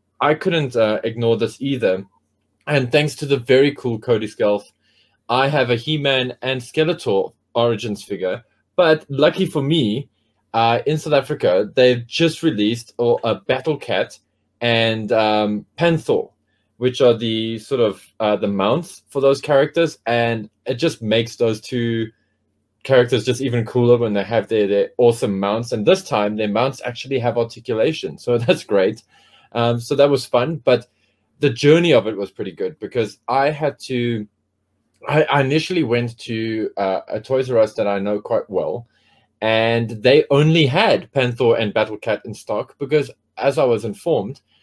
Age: 20-39